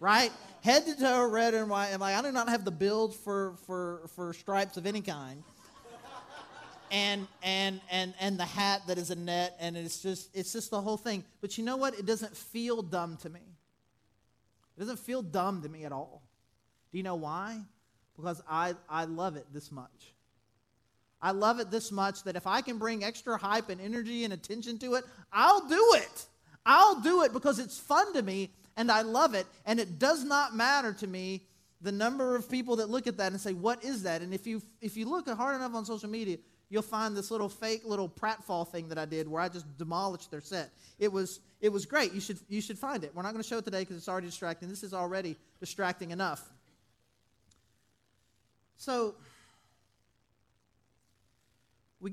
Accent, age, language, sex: American, 30-49, English, male